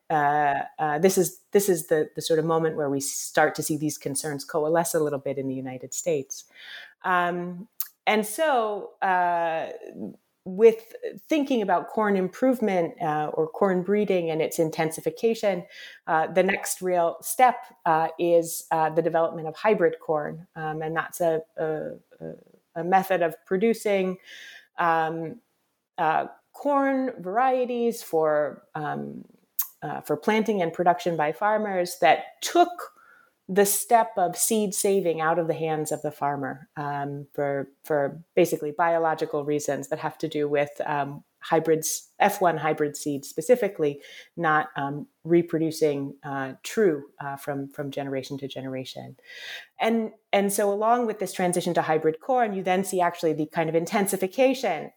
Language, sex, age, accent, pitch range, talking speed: English, female, 30-49, American, 150-190 Hz, 150 wpm